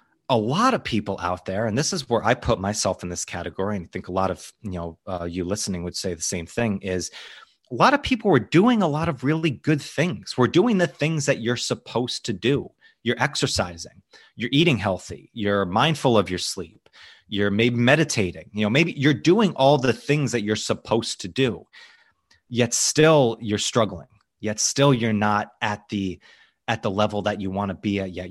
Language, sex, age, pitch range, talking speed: English, male, 30-49, 95-125 Hz, 210 wpm